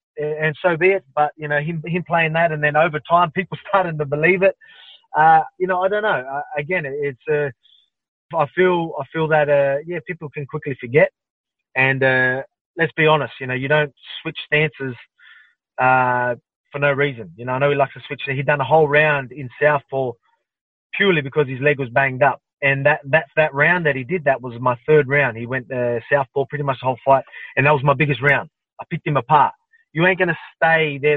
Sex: male